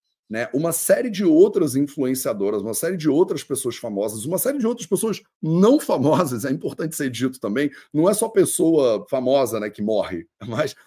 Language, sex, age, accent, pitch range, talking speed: Portuguese, male, 30-49, Brazilian, 130-190 Hz, 175 wpm